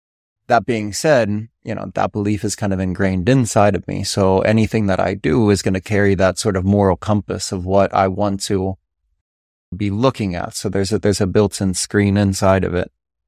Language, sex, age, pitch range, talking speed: English, male, 30-49, 100-120 Hz, 210 wpm